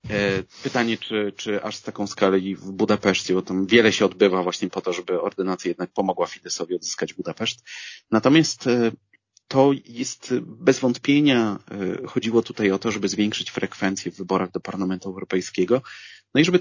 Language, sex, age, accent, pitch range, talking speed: Polish, male, 30-49, native, 100-135 Hz, 165 wpm